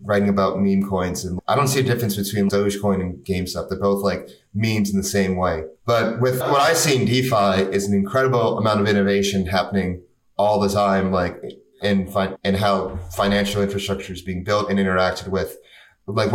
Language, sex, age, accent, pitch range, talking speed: English, male, 30-49, American, 95-115 Hz, 190 wpm